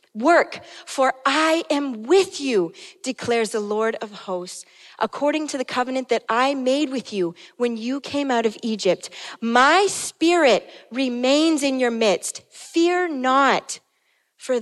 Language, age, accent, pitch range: English, 30-49, American, 200-285 Hz